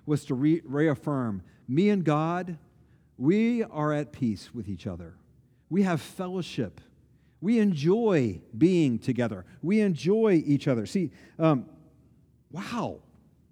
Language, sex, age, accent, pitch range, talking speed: English, male, 40-59, American, 155-230 Hz, 120 wpm